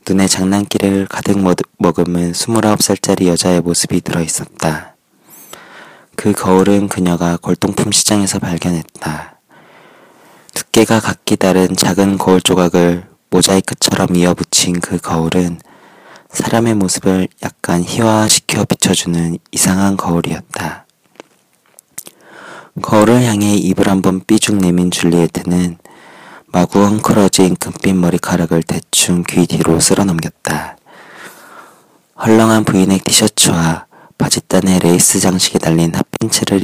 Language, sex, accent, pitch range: Korean, male, native, 85-100 Hz